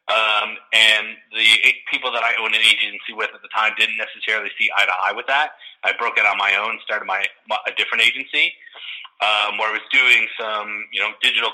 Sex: male